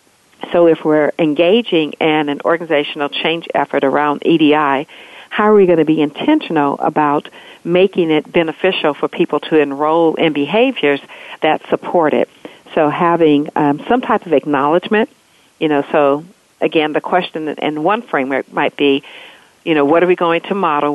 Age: 50-69